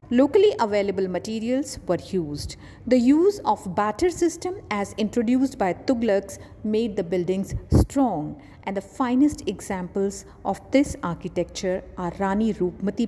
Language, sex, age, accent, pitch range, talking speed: English, female, 50-69, Indian, 185-265 Hz, 130 wpm